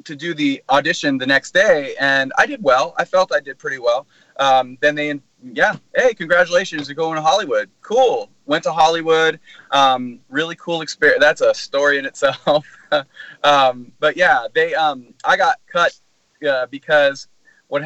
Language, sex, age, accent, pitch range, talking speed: English, male, 30-49, American, 135-175 Hz, 170 wpm